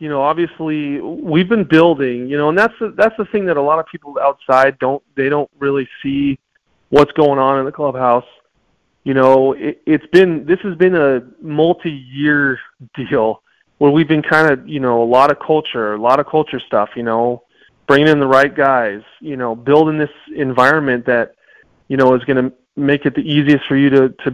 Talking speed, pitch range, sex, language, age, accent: 200 wpm, 125-150 Hz, male, English, 20-39, American